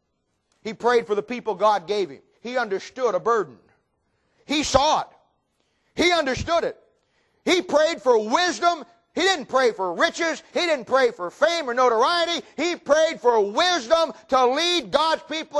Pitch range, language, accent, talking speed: 235-330 Hz, English, American, 160 wpm